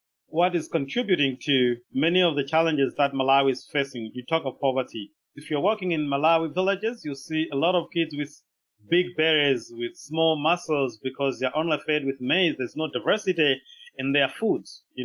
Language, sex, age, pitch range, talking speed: English, male, 30-49, 135-180 Hz, 185 wpm